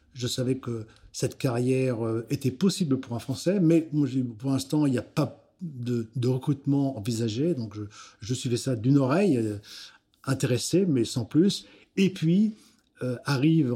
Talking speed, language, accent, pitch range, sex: 155 wpm, French, French, 115-140 Hz, male